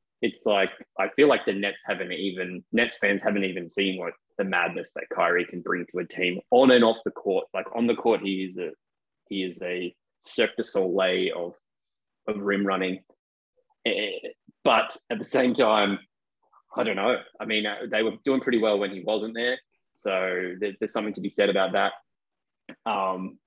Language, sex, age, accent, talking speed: English, male, 20-39, Australian, 190 wpm